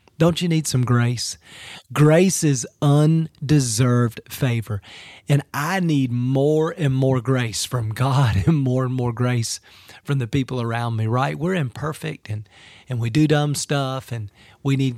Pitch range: 125-155 Hz